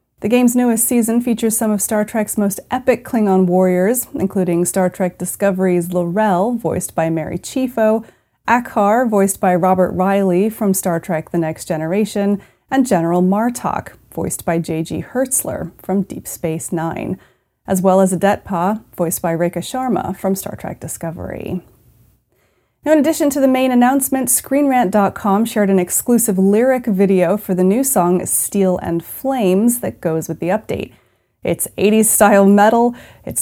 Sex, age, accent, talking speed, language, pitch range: female, 30-49, American, 155 wpm, English, 180-235 Hz